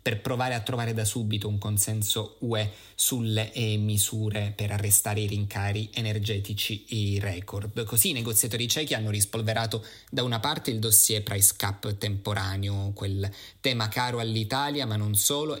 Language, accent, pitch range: Italian, native, 105-125 Hz